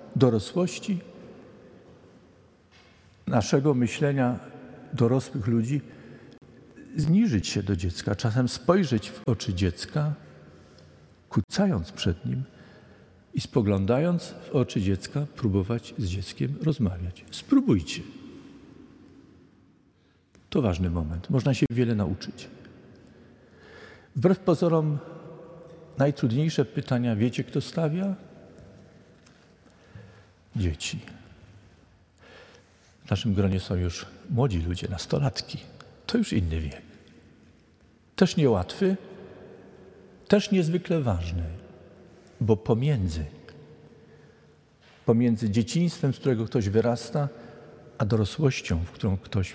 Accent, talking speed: native, 85 wpm